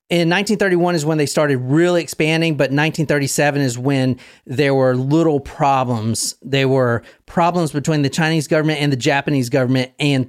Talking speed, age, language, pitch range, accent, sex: 185 wpm, 40-59, English, 130-160 Hz, American, male